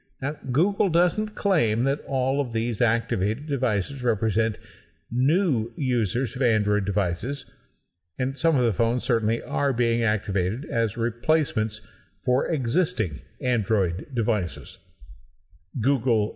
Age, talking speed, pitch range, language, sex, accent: 50-69, 115 wpm, 110-140 Hz, English, male, American